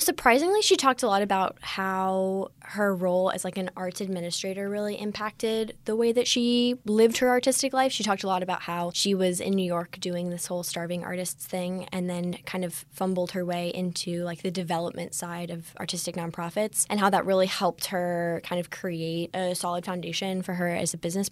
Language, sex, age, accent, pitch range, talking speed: English, female, 10-29, American, 175-205 Hz, 205 wpm